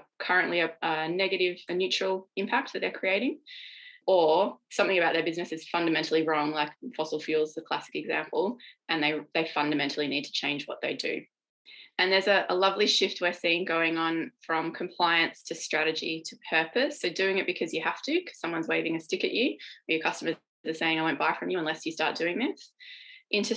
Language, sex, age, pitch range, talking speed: English, female, 20-39, 160-200 Hz, 205 wpm